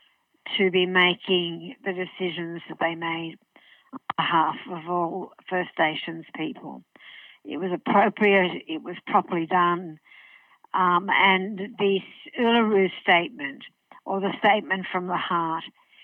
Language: English